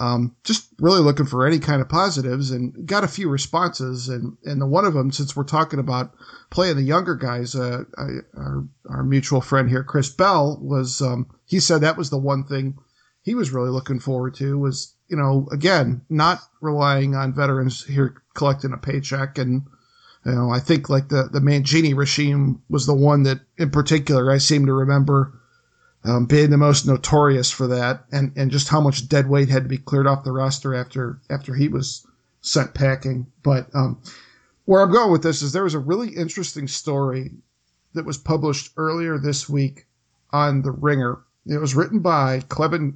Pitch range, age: 130-150 Hz, 50-69